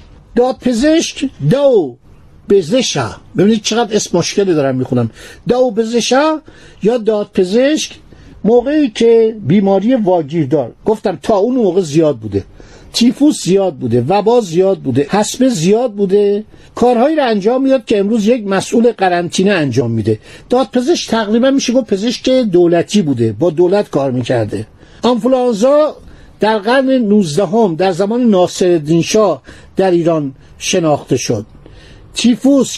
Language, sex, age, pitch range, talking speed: Persian, male, 50-69, 175-245 Hz, 130 wpm